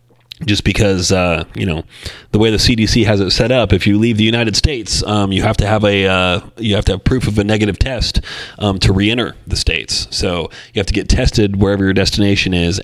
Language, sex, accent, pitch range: English, male, American, 90-110 Hz